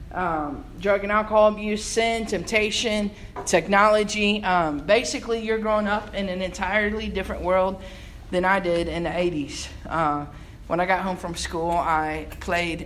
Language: English